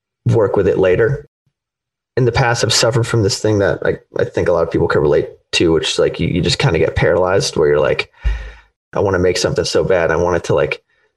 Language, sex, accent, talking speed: English, male, American, 260 wpm